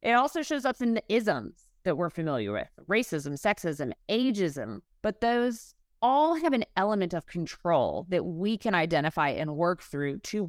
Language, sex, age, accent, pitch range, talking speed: English, female, 30-49, American, 175-255 Hz, 170 wpm